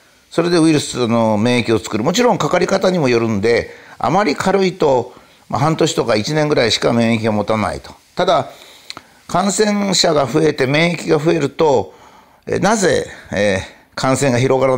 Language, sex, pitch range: Japanese, male, 115-165 Hz